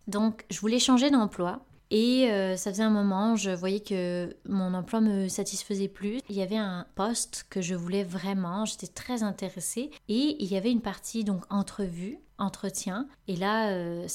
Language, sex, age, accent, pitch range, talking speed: French, female, 20-39, French, 185-220 Hz, 180 wpm